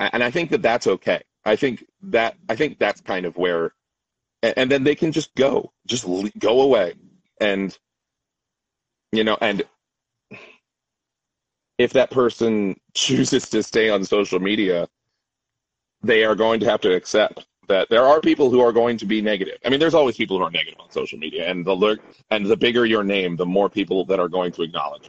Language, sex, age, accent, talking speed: English, male, 30-49, American, 190 wpm